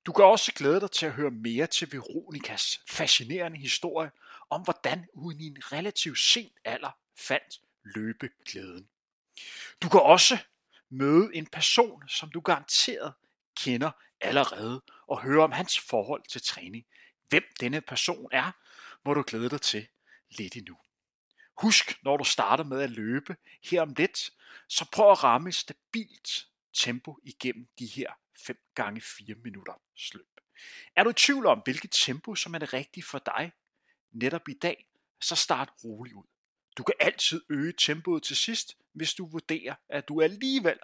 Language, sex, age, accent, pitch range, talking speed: Danish, male, 30-49, native, 135-190 Hz, 160 wpm